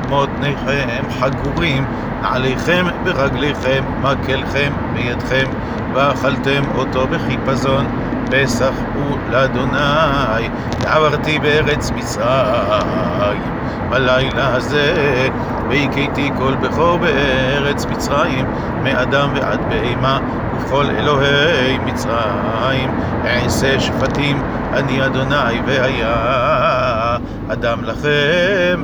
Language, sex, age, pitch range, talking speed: Hebrew, male, 50-69, 125-140 Hz, 75 wpm